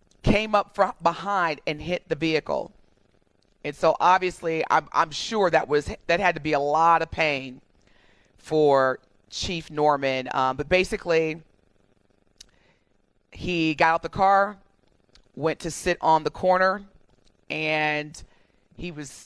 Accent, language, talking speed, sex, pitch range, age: American, English, 135 wpm, female, 125-170 Hz, 30-49